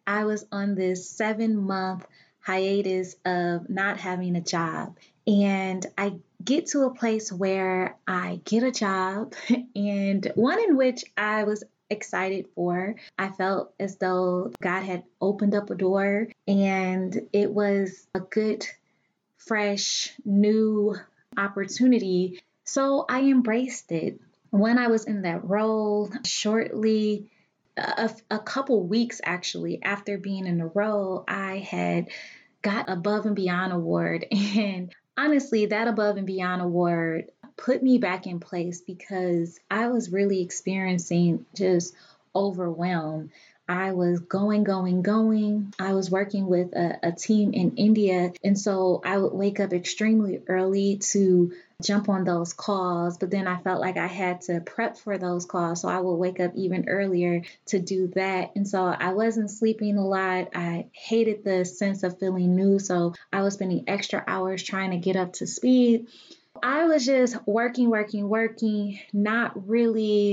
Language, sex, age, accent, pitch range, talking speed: English, female, 20-39, American, 185-215 Hz, 155 wpm